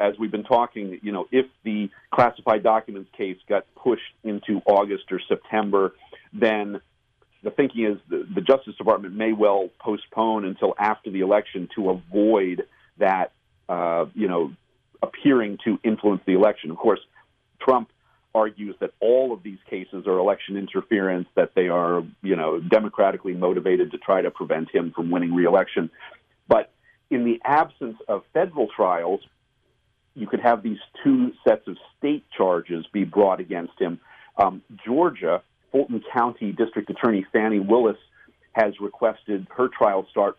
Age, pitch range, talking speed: 50-69, 95-125 Hz, 155 wpm